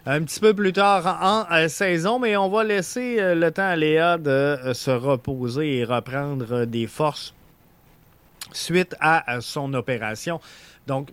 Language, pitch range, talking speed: French, 125-180 Hz, 145 wpm